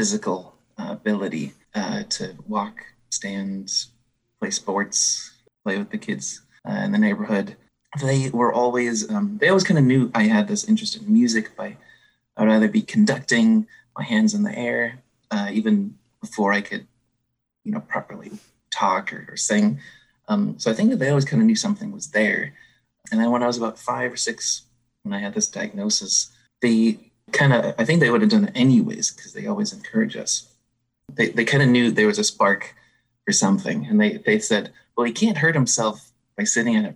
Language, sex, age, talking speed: English, male, 30-49, 195 wpm